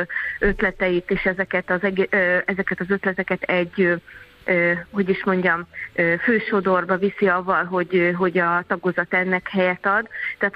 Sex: female